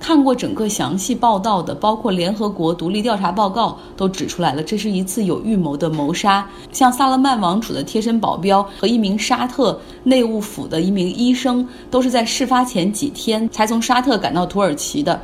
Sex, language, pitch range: female, Chinese, 180-250 Hz